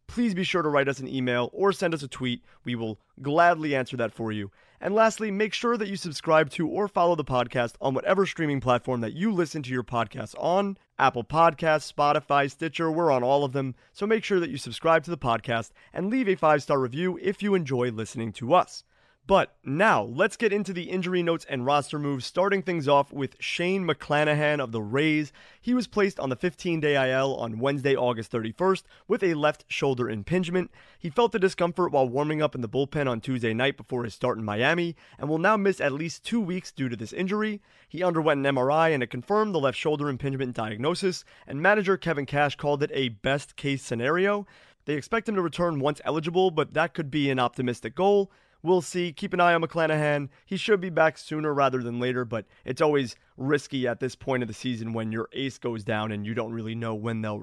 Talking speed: 220 wpm